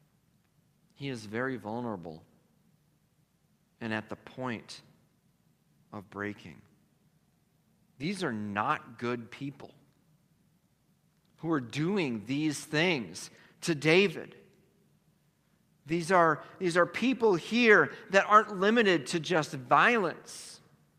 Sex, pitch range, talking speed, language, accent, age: male, 145-195 Hz, 95 wpm, English, American, 50-69